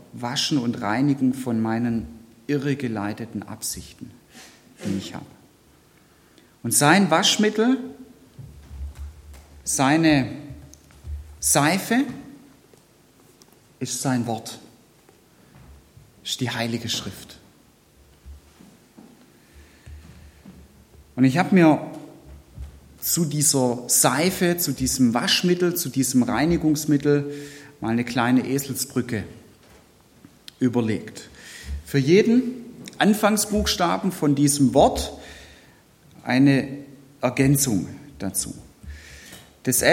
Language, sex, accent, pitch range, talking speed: German, male, German, 100-145 Hz, 75 wpm